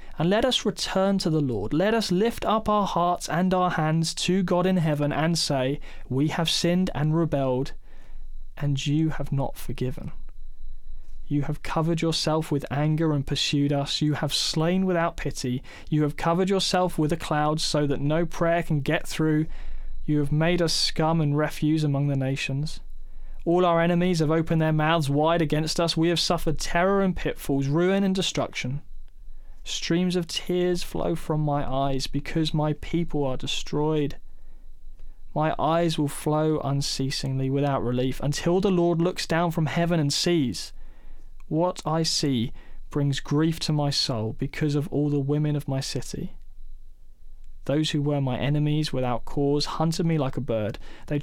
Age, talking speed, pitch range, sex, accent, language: 20-39, 170 wpm, 140-170 Hz, male, British, English